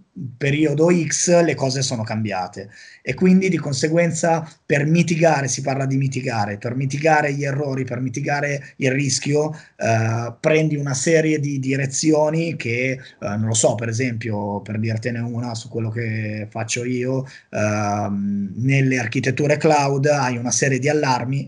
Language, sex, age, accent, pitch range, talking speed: Italian, male, 20-39, native, 120-150 Hz, 150 wpm